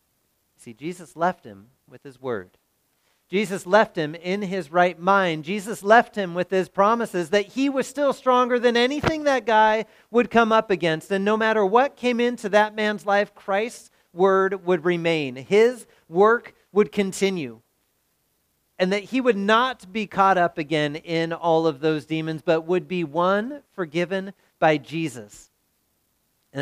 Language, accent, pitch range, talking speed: English, American, 145-205 Hz, 160 wpm